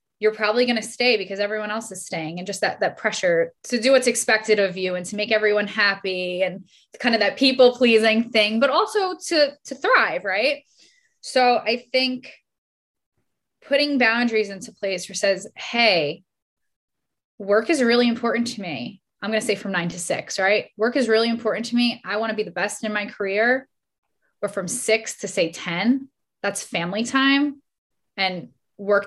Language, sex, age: English, female, 20-39